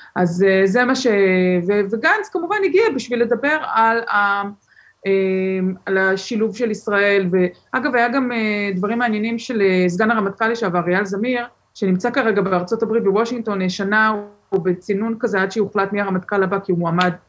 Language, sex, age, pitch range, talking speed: Hebrew, female, 20-39, 180-230 Hz, 150 wpm